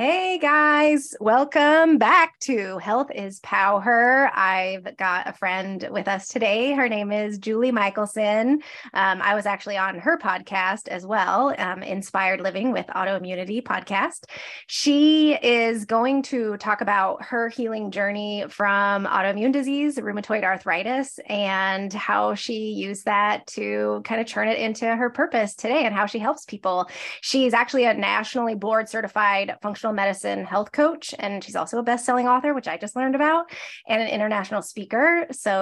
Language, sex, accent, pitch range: English, female, American, 195-245 Hz